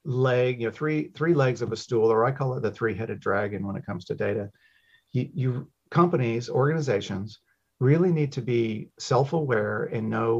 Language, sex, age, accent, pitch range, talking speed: English, male, 40-59, American, 110-145 Hz, 185 wpm